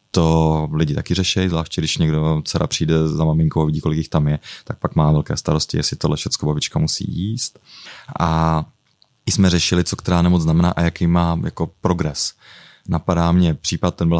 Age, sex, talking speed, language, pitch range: 20-39, male, 195 wpm, Czech, 80-90 Hz